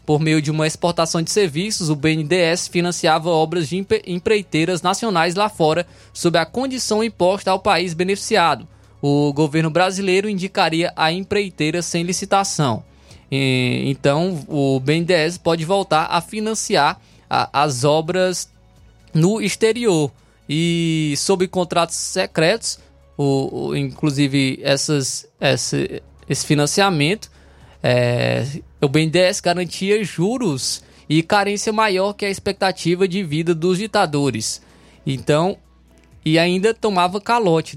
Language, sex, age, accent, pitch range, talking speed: Portuguese, male, 20-39, Brazilian, 145-190 Hz, 110 wpm